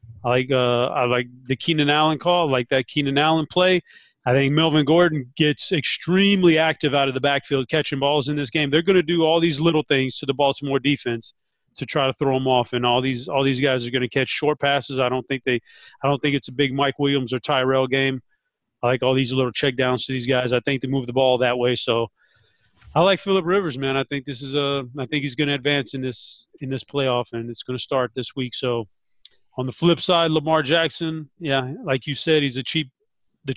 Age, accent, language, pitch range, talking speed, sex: 30-49, American, English, 130-160 Hz, 245 wpm, male